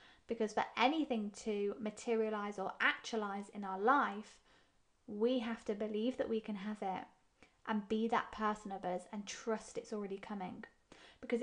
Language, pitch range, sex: English, 210-240 Hz, female